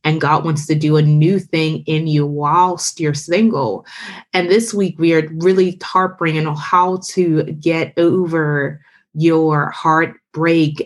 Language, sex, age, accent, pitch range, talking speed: English, female, 20-39, American, 155-180 Hz, 150 wpm